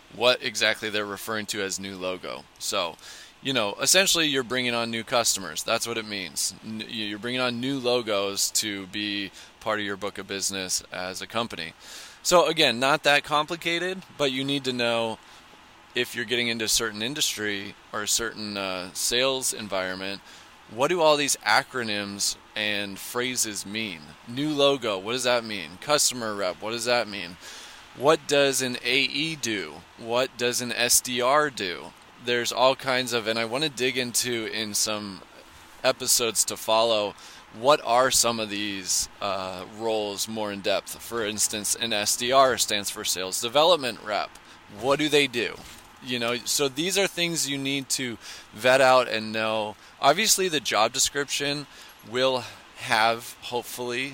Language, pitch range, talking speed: English, 105-130 Hz, 165 wpm